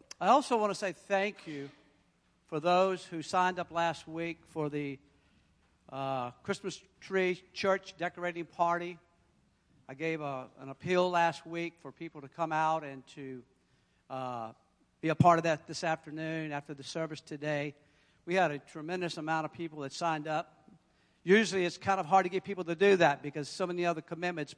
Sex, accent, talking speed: male, American, 185 wpm